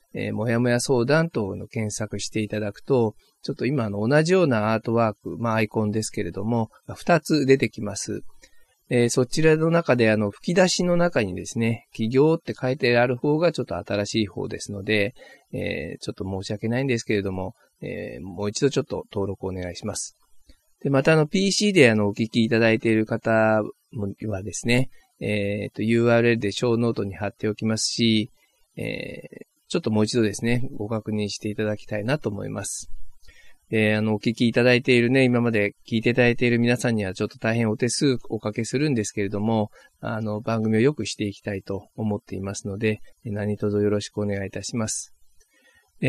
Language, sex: Japanese, male